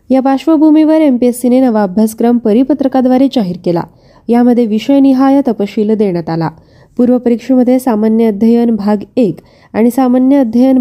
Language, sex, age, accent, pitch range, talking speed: Marathi, female, 20-39, native, 215-260 Hz, 105 wpm